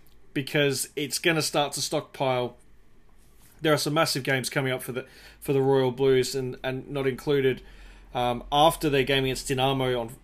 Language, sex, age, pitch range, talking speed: English, male, 20-39, 125-145 Hz, 180 wpm